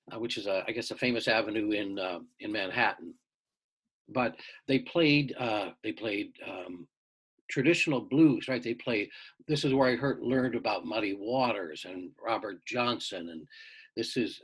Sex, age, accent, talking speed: male, 60-79, American, 160 wpm